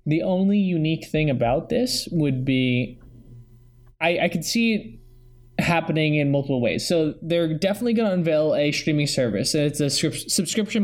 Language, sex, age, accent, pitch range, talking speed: English, male, 20-39, American, 125-165 Hz, 165 wpm